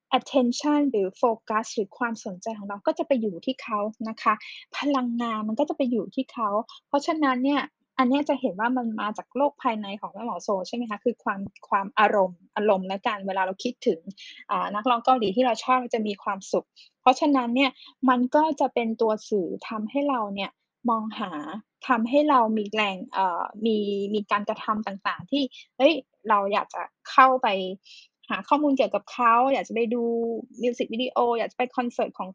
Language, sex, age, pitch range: Thai, female, 10-29, 210-260 Hz